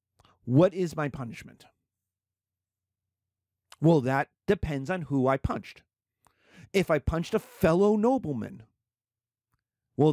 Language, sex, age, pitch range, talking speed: English, male, 40-59, 115-160 Hz, 105 wpm